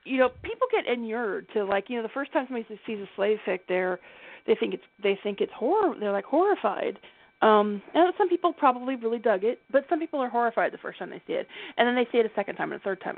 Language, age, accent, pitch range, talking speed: English, 40-59, American, 195-250 Hz, 270 wpm